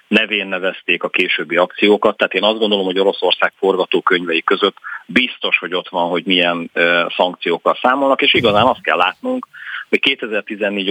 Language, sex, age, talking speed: Hungarian, male, 40-59, 155 wpm